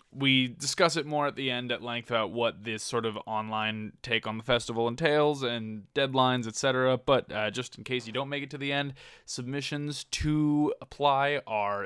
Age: 20-39